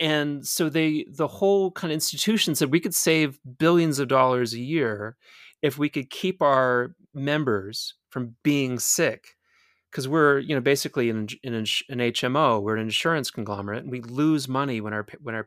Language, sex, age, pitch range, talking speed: English, male, 30-49, 120-155 Hz, 180 wpm